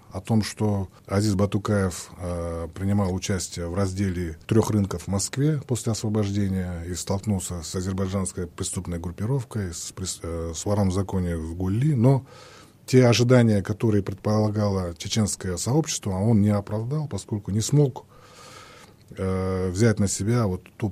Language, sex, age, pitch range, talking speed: Russian, male, 20-39, 95-120 Hz, 135 wpm